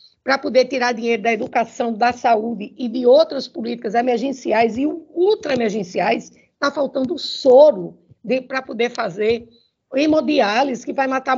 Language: Portuguese